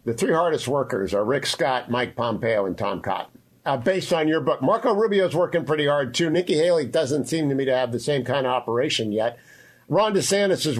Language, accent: English, American